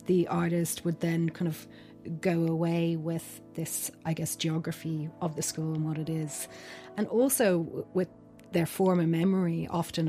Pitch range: 155-175 Hz